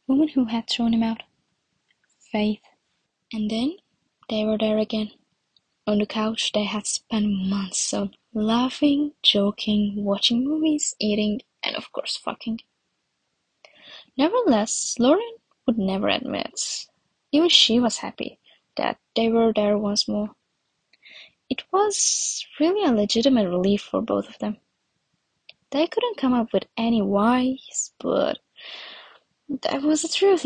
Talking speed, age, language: 130 wpm, 10-29, English